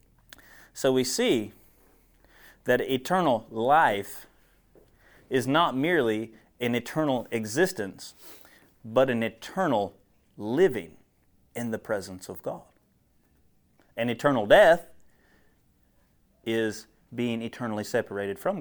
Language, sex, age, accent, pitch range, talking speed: English, male, 30-49, American, 100-125 Hz, 95 wpm